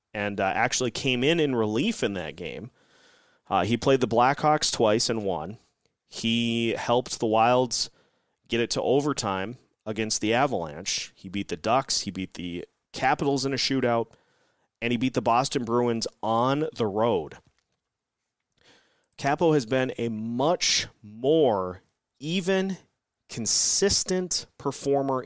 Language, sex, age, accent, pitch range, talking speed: English, male, 30-49, American, 110-140 Hz, 140 wpm